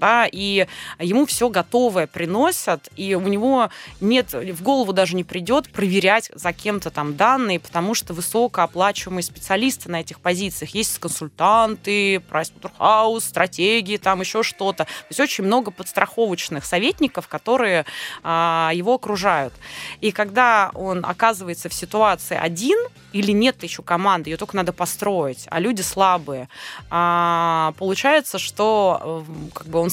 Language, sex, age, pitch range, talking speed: Russian, female, 20-39, 175-225 Hz, 130 wpm